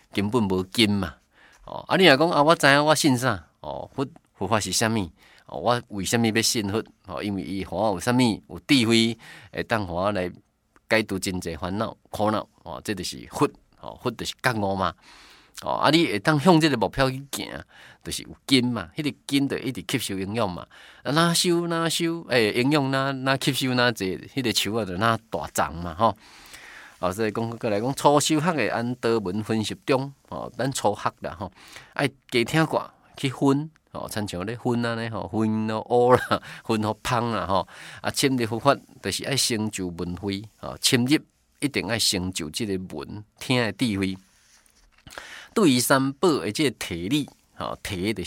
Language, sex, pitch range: Chinese, male, 100-135 Hz